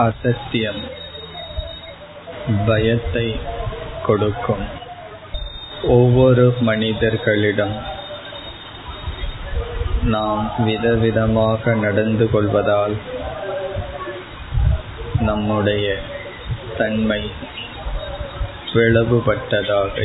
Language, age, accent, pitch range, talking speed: Tamil, 20-39, native, 105-115 Hz, 35 wpm